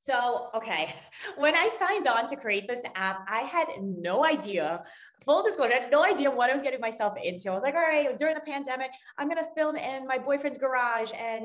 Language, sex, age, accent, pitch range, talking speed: English, female, 20-39, American, 185-240 Hz, 235 wpm